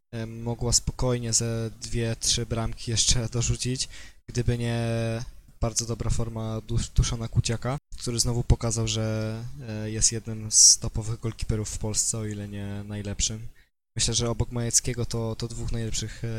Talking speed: 140 wpm